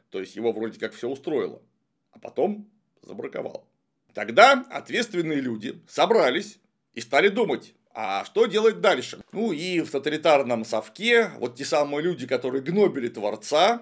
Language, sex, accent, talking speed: Russian, male, native, 145 wpm